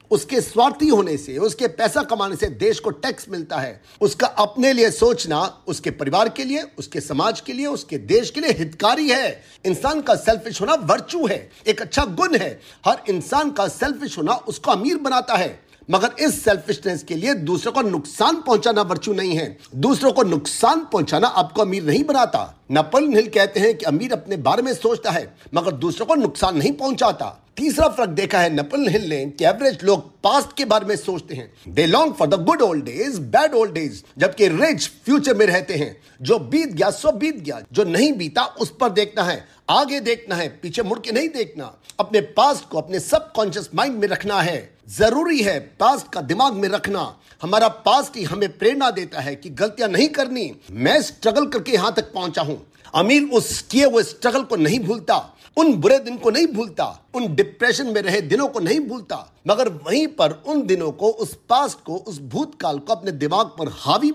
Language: Hindi